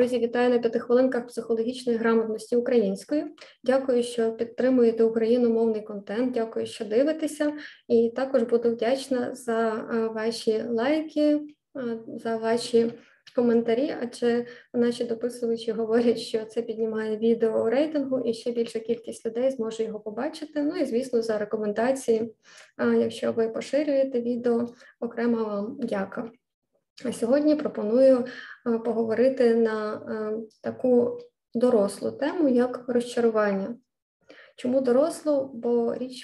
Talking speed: 115 wpm